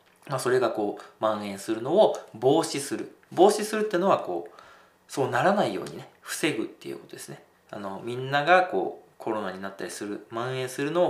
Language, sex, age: Japanese, male, 20-39